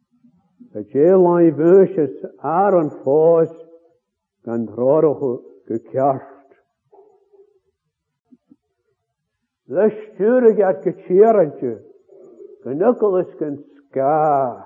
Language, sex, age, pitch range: English, male, 60-79, 130-190 Hz